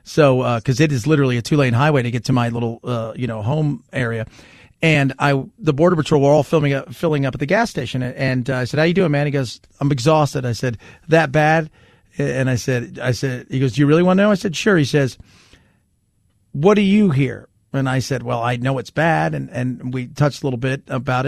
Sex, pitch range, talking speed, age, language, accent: male, 125-155 Hz, 250 wpm, 40-59, English, American